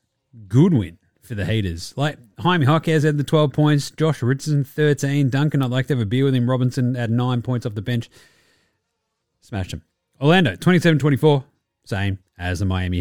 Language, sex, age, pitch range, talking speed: English, male, 30-49, 115-160 Hz, 185 wpm